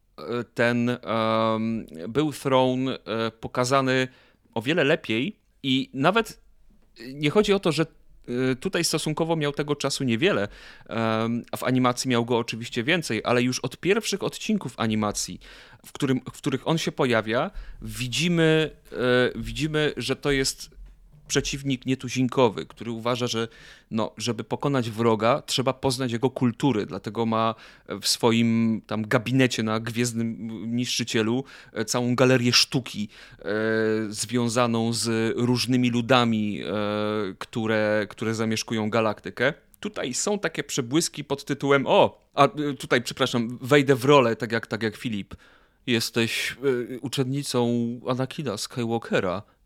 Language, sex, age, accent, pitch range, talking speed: Polish, male, 30-49, native, 115-140 Hz, 125 wpm